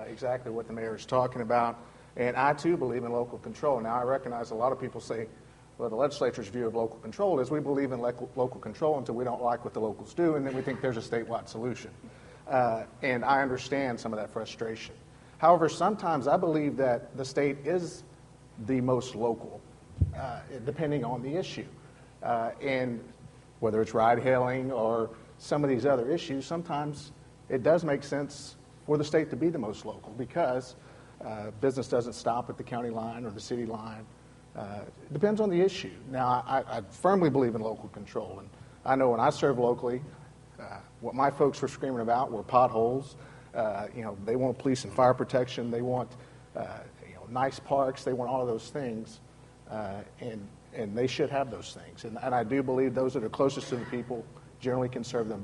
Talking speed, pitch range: 205 wpm, 120-140 Hz